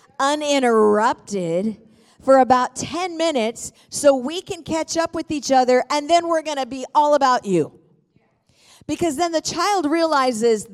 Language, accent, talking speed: English, American, 150 wpm